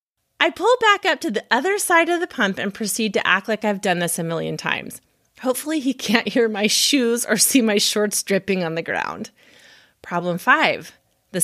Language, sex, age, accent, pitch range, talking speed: English, female, 30-49, American, 175-240 Hz, 205 wpm